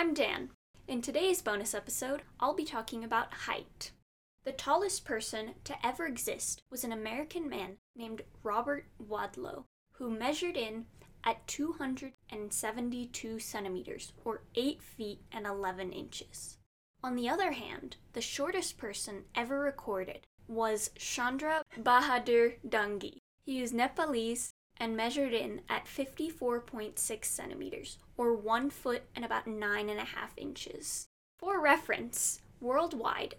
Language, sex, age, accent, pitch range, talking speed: English, female, 20-39, American, 220-275 Hz, 130 wpm